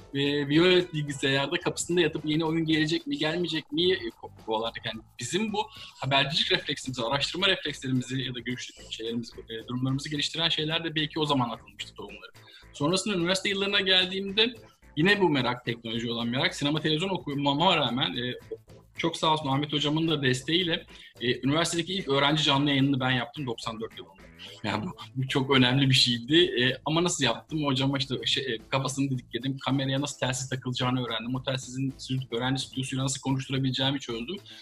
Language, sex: Turkish, male